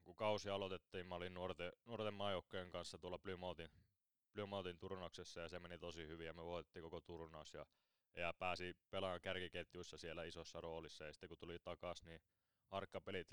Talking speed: 165 wpm